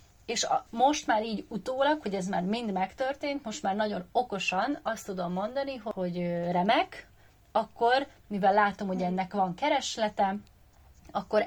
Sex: female